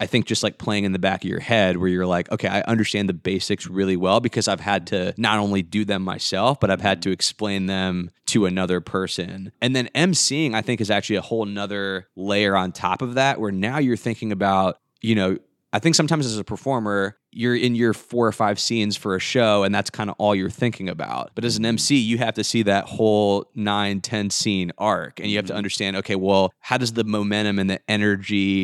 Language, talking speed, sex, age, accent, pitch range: English, 235 wpm, male, 20-39, American, 95-110 Hz